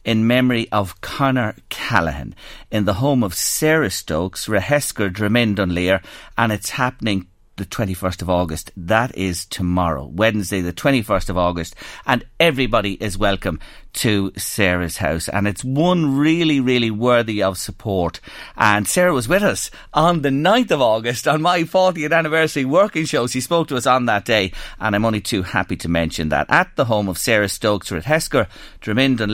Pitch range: 95-140 Hz